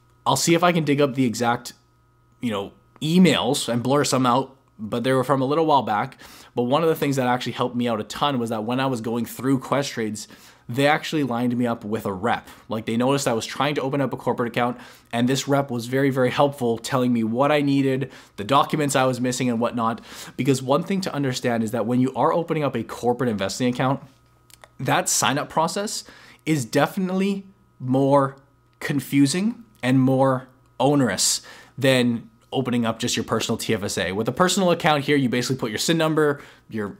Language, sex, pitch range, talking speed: English, male, 120-145 Hz, 210 wpm